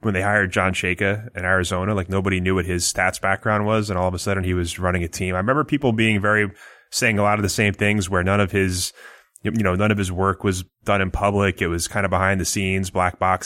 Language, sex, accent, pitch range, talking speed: English, male, American, 90-110 Hz, 265 wpm